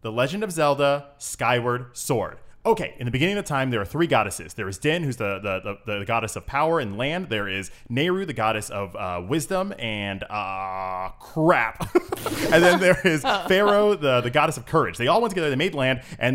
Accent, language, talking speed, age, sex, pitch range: American, English, 215 wpm, 20-39, male, 125-185 Hz